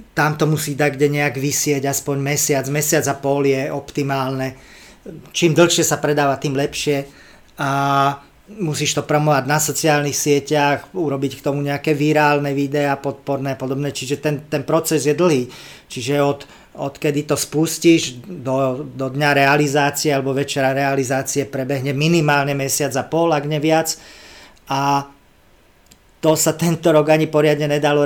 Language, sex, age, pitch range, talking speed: Slovak, male, 40-59, 140-150 Hz, 150 wpm